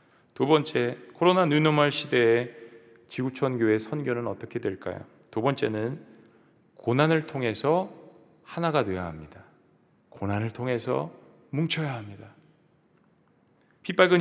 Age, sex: 40-59, male